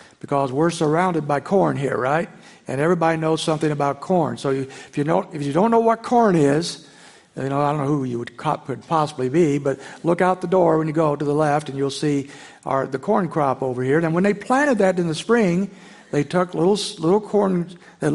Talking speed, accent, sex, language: 230 wpm, American, male, English